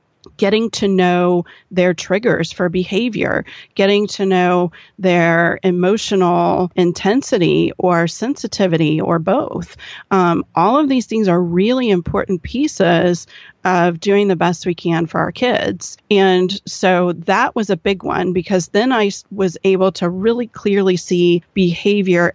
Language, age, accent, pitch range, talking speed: English, 40-59, American, 170-195 Hz, 140 wpm